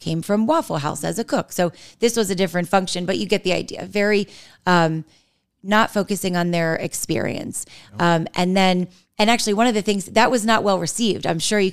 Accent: American